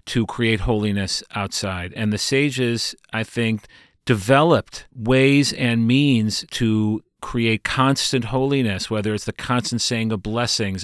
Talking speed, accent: 135 wpm, American